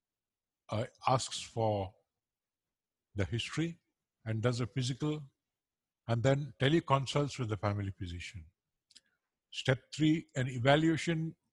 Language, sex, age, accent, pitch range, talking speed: English, male, 50-69, Indian, 105-135 Hz, 105 wpm